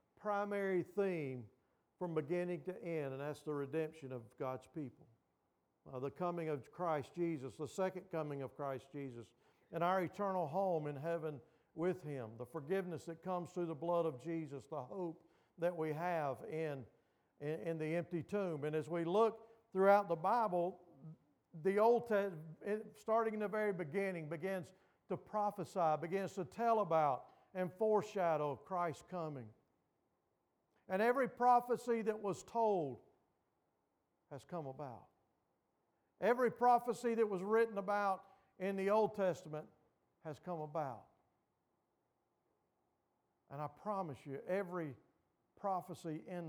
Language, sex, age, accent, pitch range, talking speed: English, male, 50-69, American, 145-190 Hz, 140 wpm